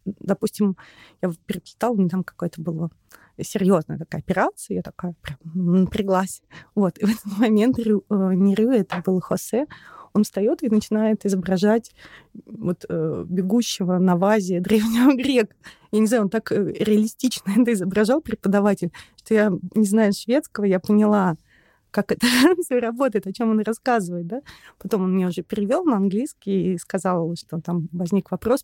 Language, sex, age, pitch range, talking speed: Russian, female, 30-49, 185-220 Hz, 150 wpm